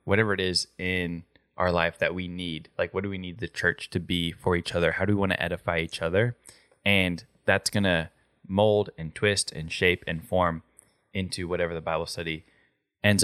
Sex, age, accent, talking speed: male, 10-29, American, 210 wpm